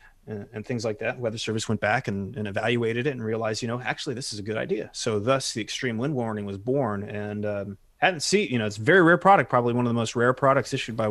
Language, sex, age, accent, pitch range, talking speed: English, male, 30-49, American, 105-125 Hz, 270 wpm